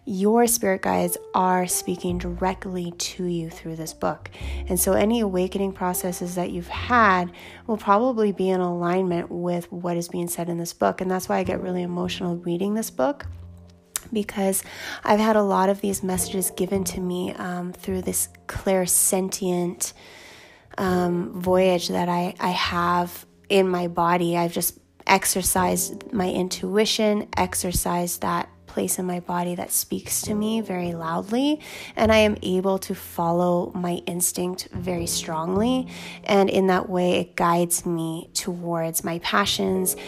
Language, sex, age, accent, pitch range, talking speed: English, female, 20-39, American, 175-195 Hz, 155 wpm